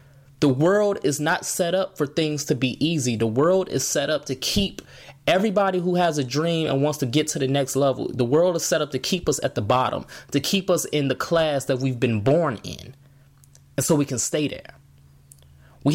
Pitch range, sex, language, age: 135-180 Hz, male, English, 20-39